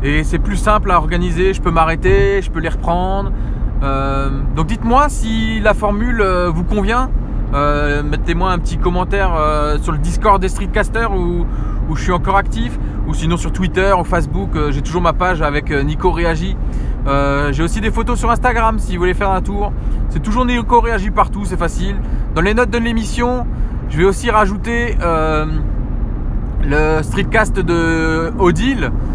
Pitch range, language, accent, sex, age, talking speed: 145-205 Hz, French, French, male, 20-39, 175 wpm